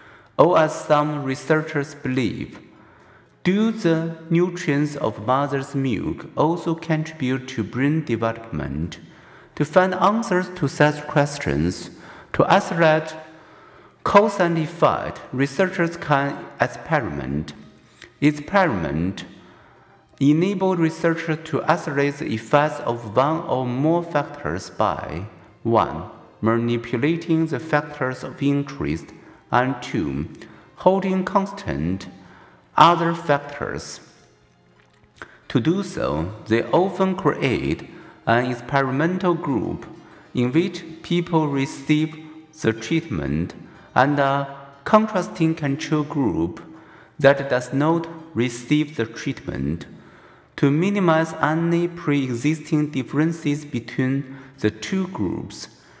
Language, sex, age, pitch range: Chinese, male, 50-69, 120-165 Hz